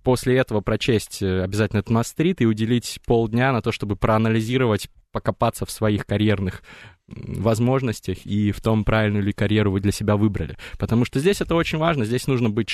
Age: 20-39